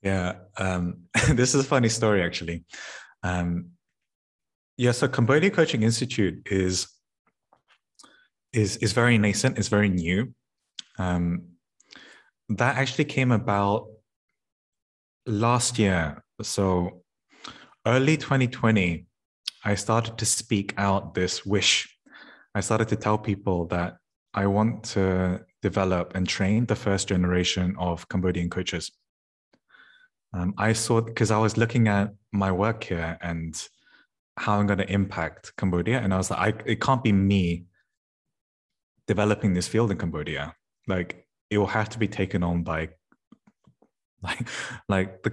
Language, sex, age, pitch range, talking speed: English, male, 20-39, 90-115 Hz, 135 wpm